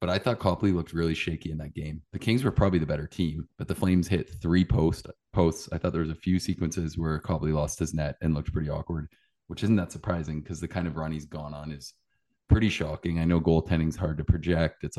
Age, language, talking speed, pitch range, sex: 20-39, English, 250 wpm, 75-85 Hz, male